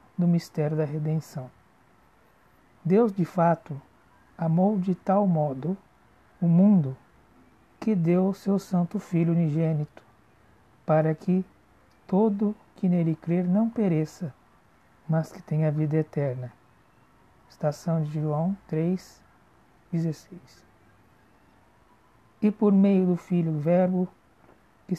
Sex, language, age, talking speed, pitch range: male, Portuguese, 60-79, 110 wpm, 155-195 Hz